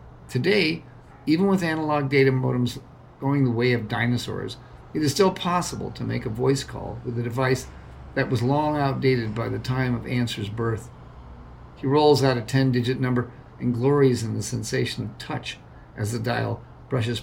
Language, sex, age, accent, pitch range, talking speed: English, male, 50-69, American, 115-135 Hz, 175 wpm